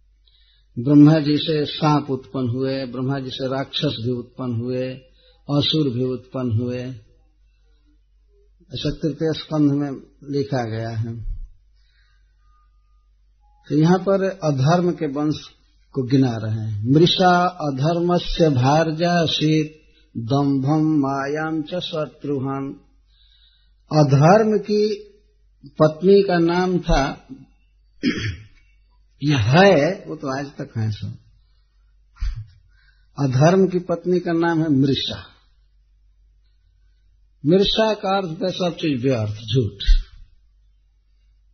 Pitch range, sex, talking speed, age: 115-165 Hz, male, 100 wpm, 50-69